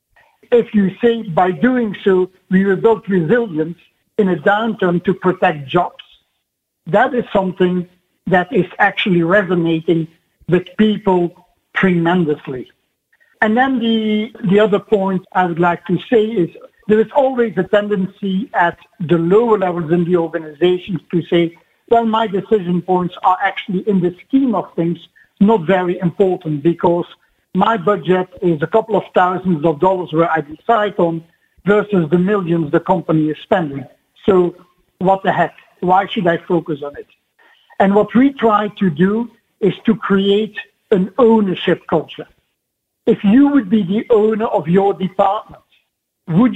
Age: 60-79